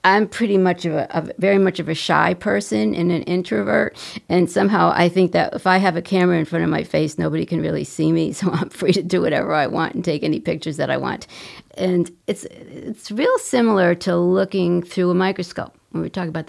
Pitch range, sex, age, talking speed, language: 170-195 Hz, female, 50-69, 230 wpm, English